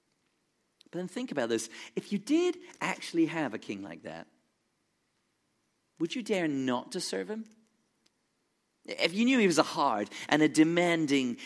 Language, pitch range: English, 160-240 Hz